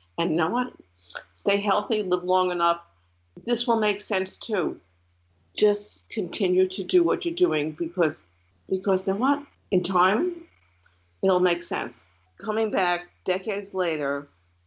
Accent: American